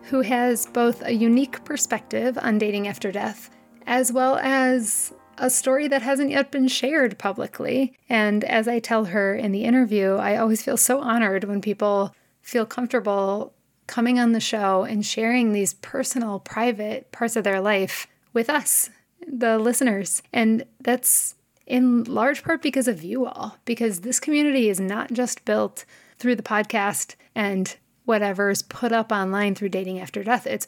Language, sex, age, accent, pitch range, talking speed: English, female, 30-49, American, 205-250 Hz, 165 wpm